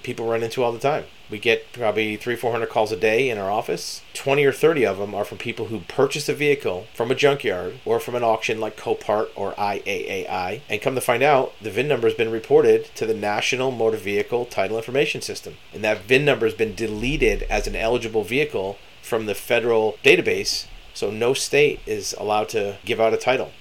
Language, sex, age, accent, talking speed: English, male, 40-59, American, 215 wpm